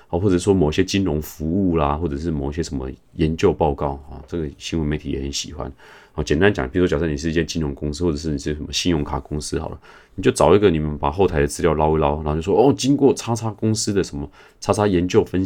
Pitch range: 75-95 Hz